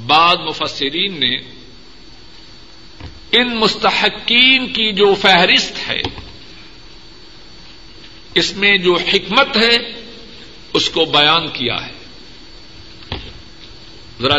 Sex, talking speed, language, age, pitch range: male, 85 wpm, Urdu, 50-69, 150-200 Hz